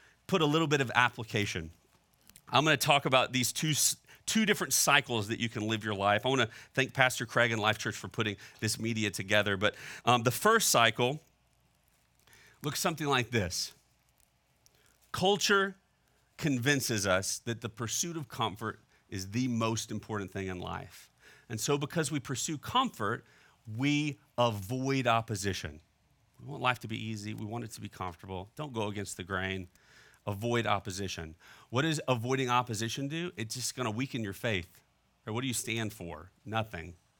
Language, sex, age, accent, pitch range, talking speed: English, male, 40-59, American, 100-130 Hz, 170 wpm